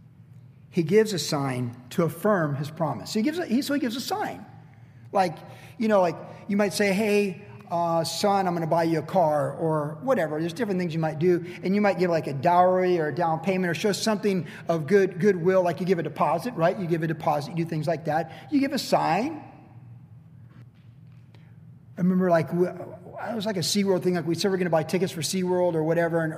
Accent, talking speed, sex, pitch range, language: American, 235 wpm, male, 145-185 Hz, English